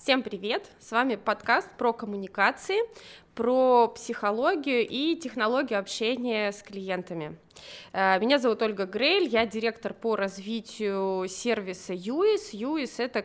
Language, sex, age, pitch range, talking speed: Russian, female, 20-39, 190-240 Hz, 120 wpm